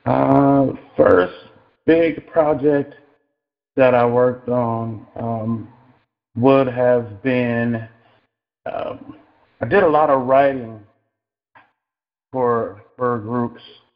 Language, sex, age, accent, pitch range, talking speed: English, male, 40-59, American, 105-125 Hz, 95 wpm